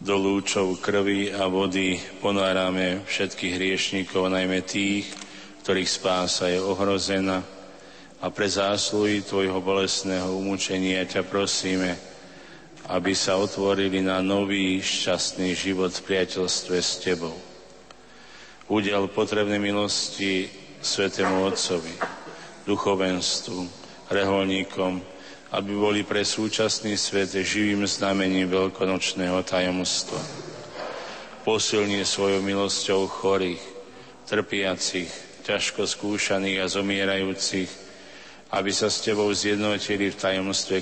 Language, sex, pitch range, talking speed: Slovak, male, 95-100 Hz, 95 wpm